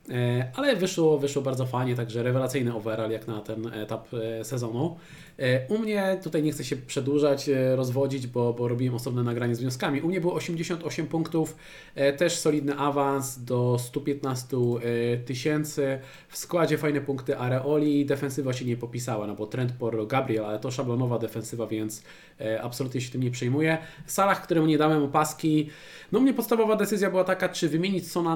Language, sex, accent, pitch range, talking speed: Polish, male, native, 125-155 Hz, 165 wpm